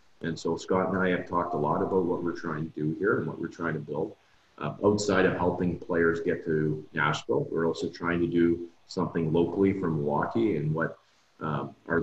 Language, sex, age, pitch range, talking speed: English, male, 40-59, 80-95 Hz, 215 wpm